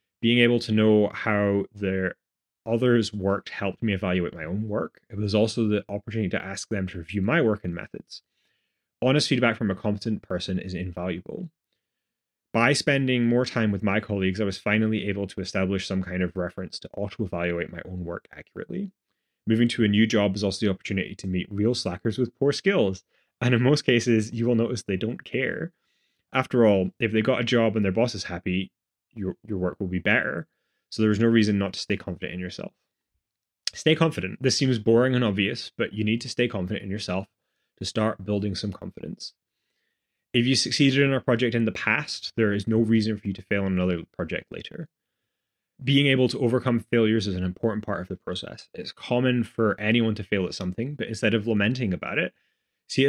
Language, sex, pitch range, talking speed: English, male, 95-120 Hz, 205 wpm